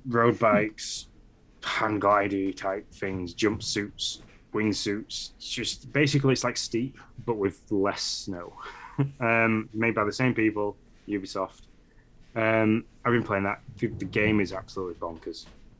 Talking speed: 135 wpm